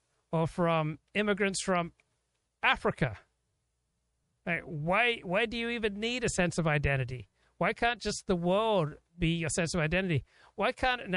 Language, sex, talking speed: English, male, 155 wpm